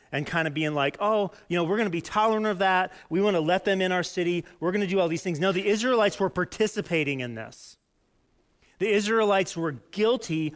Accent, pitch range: American, 140-190 Hz